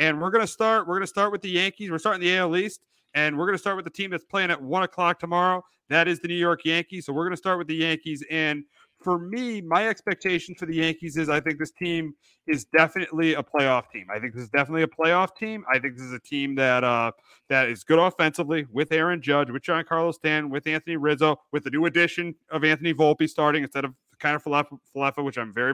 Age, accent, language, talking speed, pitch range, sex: 40-59, American, English, 255 wpm, 140-170 Hz, male